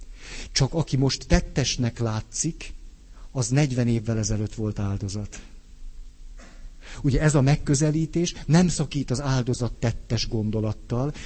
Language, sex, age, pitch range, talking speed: Hungarian, male, 50-69, 85-135 Hz, 110 wpm